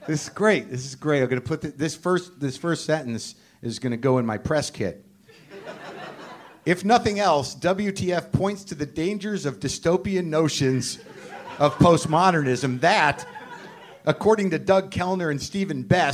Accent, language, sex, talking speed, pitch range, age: American, English, male, 155 wpm, 130-180 Hz, 50-69